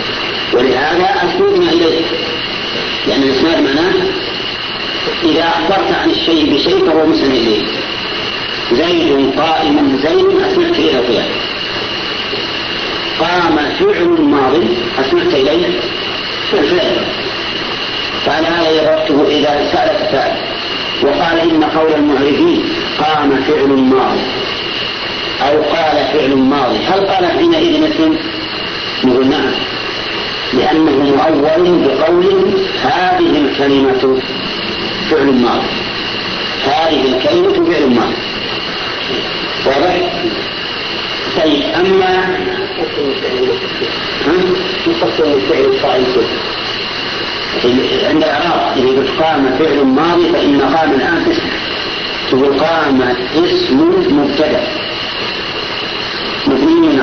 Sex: male